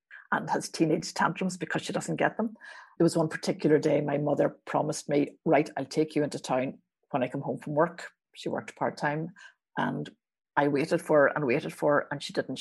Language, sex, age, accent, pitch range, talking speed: English, female, 50-69, Irish, 150-180 Hz, 205 wpm